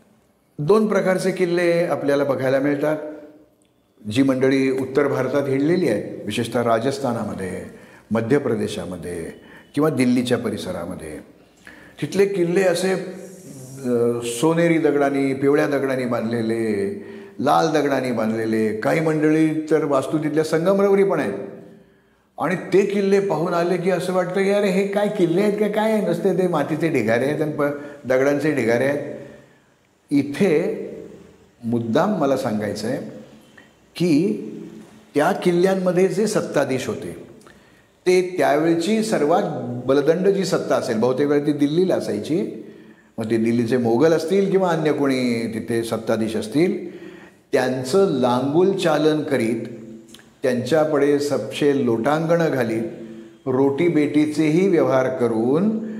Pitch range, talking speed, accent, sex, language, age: 130-185 Hz, 115 wpm, native, male, Marathi, 50-69